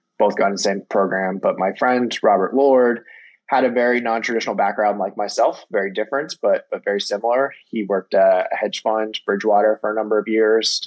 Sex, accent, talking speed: male, American, 200 wpm